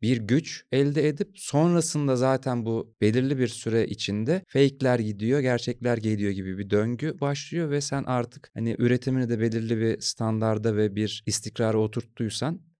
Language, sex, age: Turkish, male, 30-49